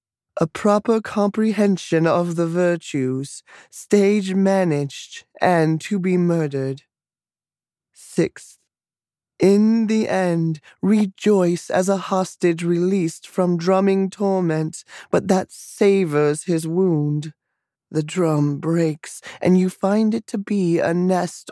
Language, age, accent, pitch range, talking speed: English, 20-39, American, 155-190 Hz, 110 wpm